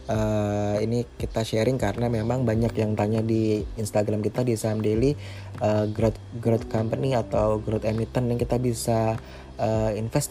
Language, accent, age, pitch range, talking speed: Indonesian, native, 20-39, 100-115 Hz, 155 wpm